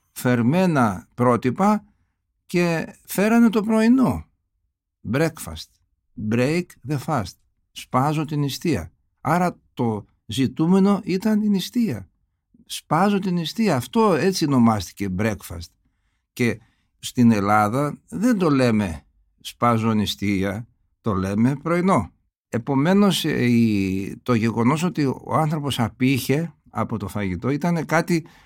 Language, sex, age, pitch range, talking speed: Greek, male, 60-79, 105-160 Hz, 105 wpm